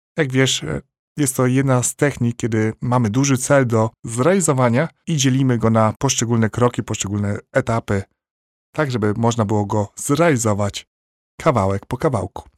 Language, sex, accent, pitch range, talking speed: Polish, male, native, 110-130 Hz, 145 wpm